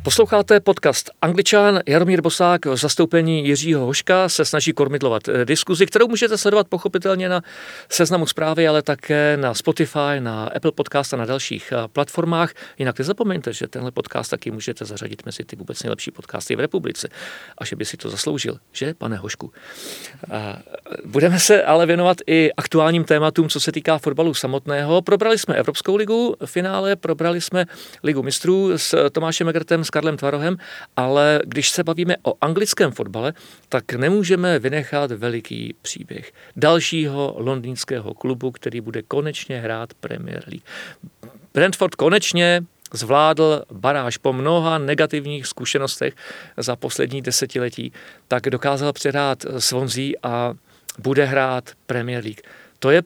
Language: Czech